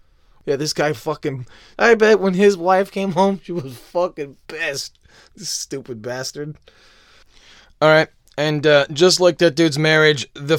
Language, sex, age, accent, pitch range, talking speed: English, male, 30-49, American, 95-145 Hz, 160 wpm